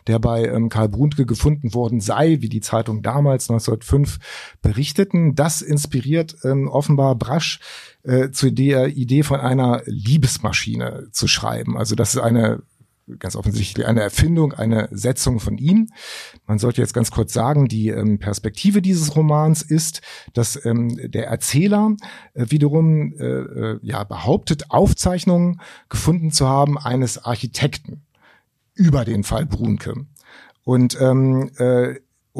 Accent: German